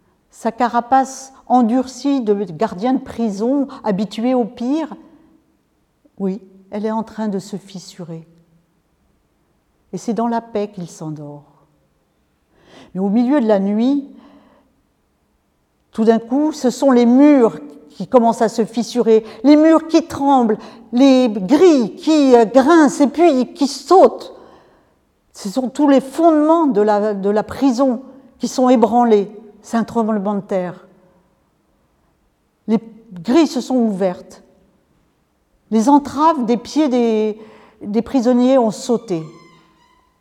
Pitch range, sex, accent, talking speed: 210-265 Hz, female, French, 130 wpm